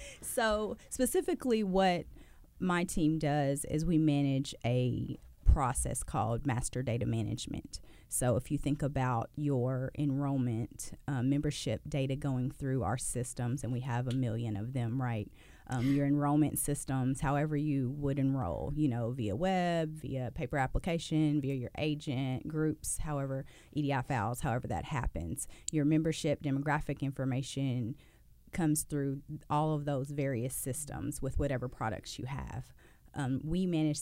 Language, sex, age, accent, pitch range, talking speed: English, female, 30-49, American, 130-150 Hz, 145 wpm